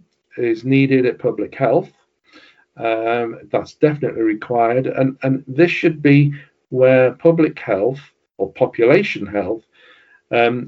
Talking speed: 120 wpm